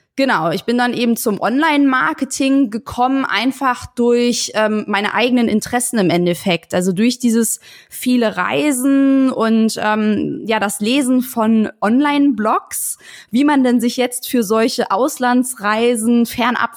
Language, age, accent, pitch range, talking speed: German, 20-39, German, 205-250 Hz, 130 wpm